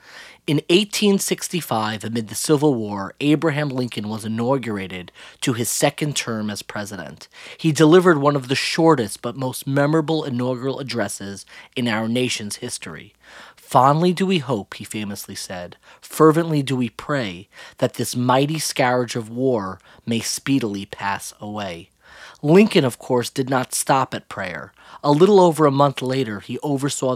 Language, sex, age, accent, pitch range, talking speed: English, male, 30-49, American, 110-145 Hz, 150 wpm